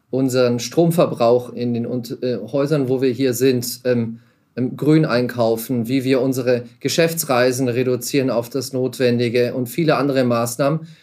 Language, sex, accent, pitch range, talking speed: German, male, German, 125-155 Hz, 135 wpm